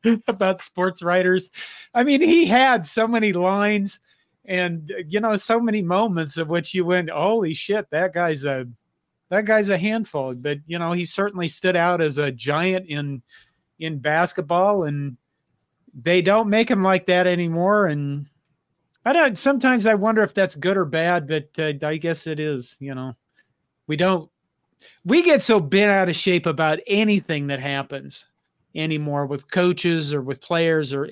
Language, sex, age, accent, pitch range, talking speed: English, male, 40-59, American, 150-195 Hz, 170 wpm